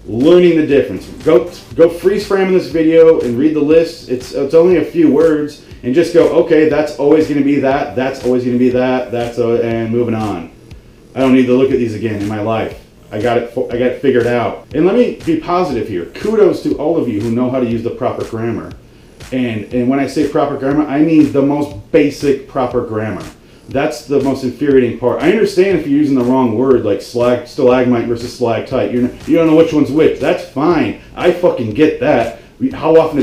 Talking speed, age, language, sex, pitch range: 230 wpm, 30-49, English, male, 120-160 Hz